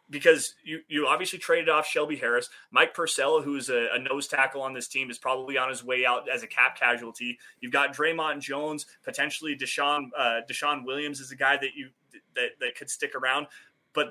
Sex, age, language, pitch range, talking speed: male, 20-39, English, 135-215 Hz, 210 wpm